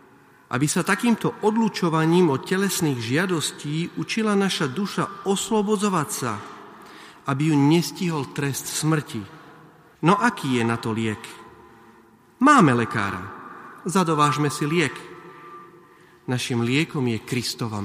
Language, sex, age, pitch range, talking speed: Slovak, male, 40-59, 125-170 Hz, 110 wpm